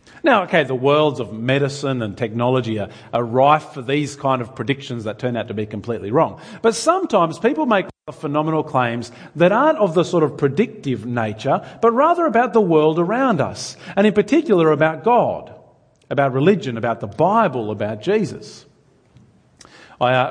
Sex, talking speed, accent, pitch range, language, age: male, 170 wpm, Australian, 125-170 Hz, English, 40-59